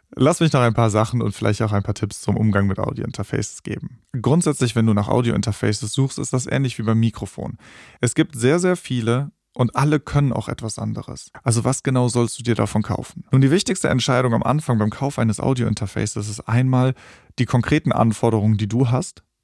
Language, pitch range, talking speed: German, 110-130 Hz, 205 wpm